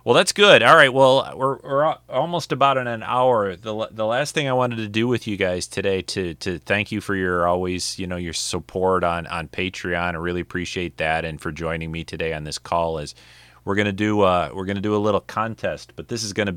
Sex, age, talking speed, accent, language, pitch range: male, 30-49, 240 wpm, American, English, 80-100 Hz